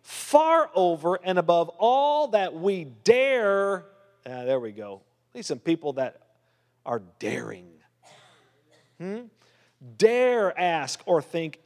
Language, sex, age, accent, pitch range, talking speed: English, male, 40-59, American, 130-200 Hz, 125 wpm